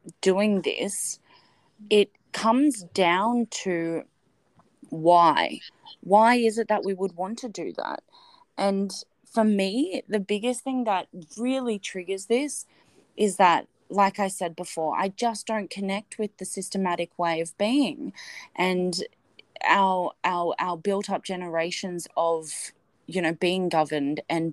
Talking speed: 135 wpm